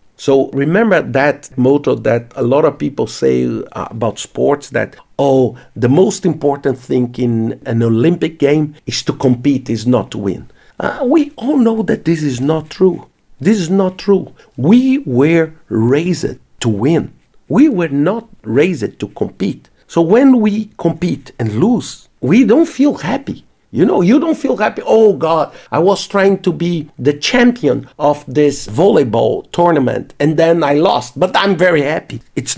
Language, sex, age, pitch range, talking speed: English, male, 50-69, 135-195 Hz, 170 wpm